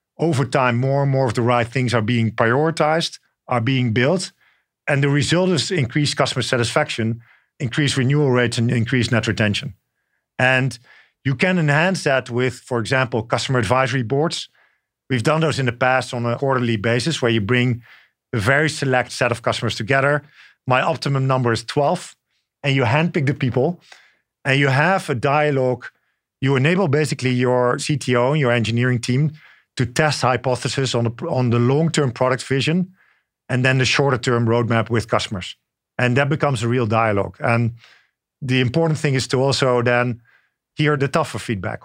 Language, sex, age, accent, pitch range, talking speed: English, male, 50-69, Dutch, 120-145 Hz, 170 wpm